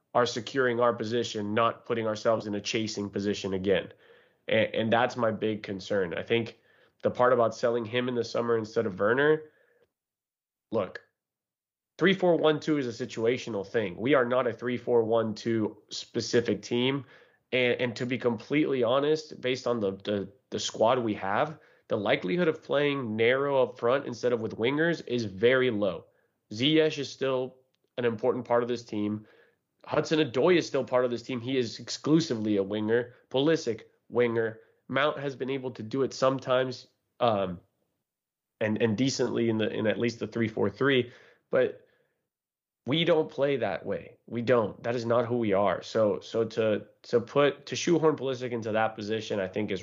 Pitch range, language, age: 110-130 Hz, English, 20-39